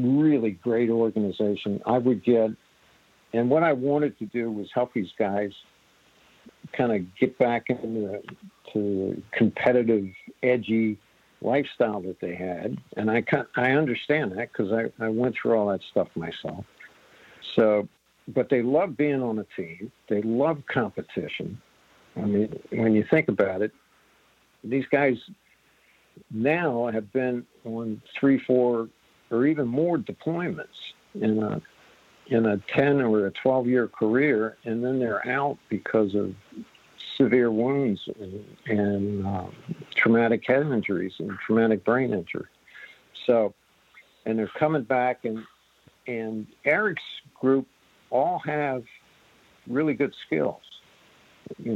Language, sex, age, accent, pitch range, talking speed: English, male, 60-79, American, 105-130 Hz, 135 wpm